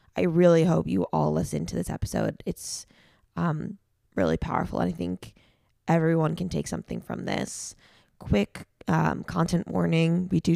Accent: American